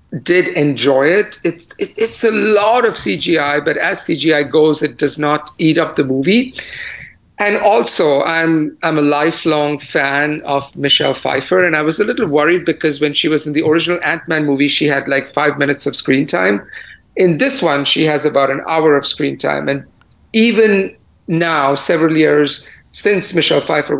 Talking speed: 180 wpm